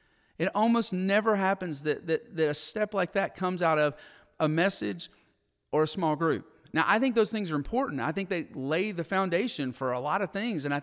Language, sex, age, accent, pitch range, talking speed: English, male, 40-59, American, 140-185 Hz, 220 wpm